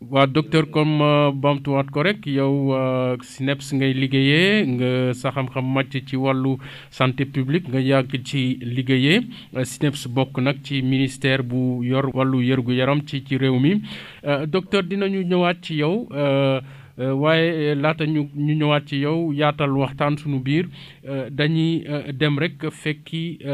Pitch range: 135-155 Hz